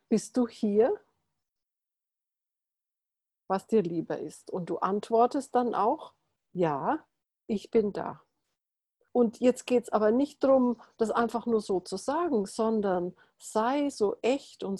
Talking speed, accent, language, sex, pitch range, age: 140 wpm, German, German, female, 190-245 Hz, 50-69